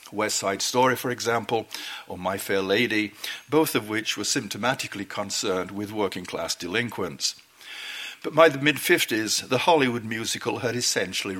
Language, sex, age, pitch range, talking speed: English, male, 60-79, 100-130 Hz, 140 wpm